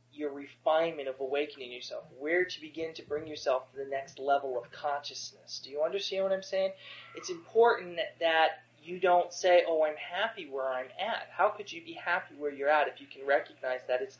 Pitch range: 135-200 Hz